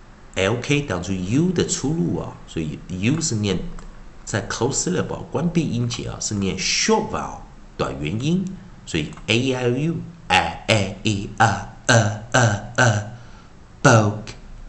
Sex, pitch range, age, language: male, 105-140 Hz, 50-69, Chinese